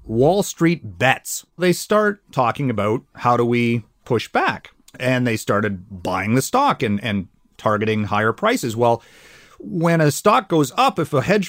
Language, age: English, 30-49